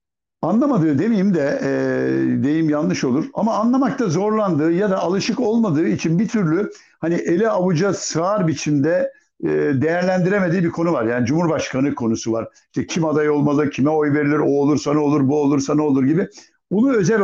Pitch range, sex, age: 140-205 Hz, male, 60-79